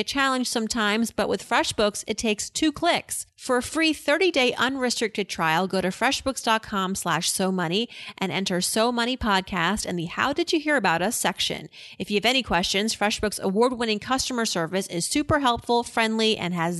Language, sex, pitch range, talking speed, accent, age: English, female, 190-250 Hz, 180 wpm, American, 30-49